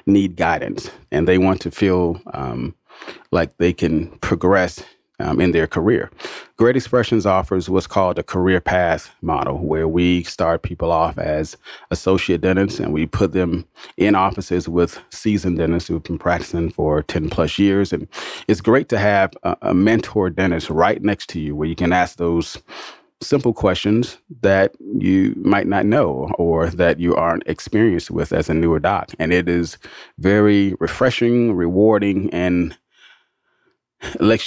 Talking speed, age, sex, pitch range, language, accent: 160 wpm, 30-49, male, 85-100 Hz, English, American